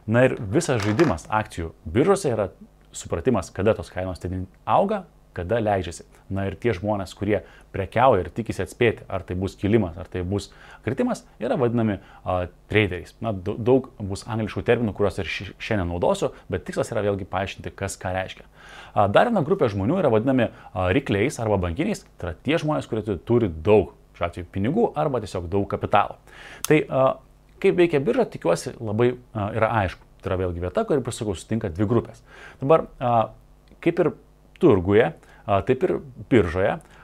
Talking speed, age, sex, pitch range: 175 wpm, 30-49, male, 95-120 Hz